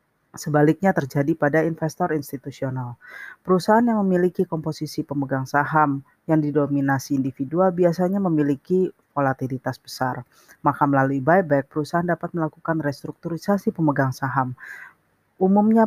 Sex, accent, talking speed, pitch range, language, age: female, native, 105 wpm, 140-165 Hz, Indonesian, 30-49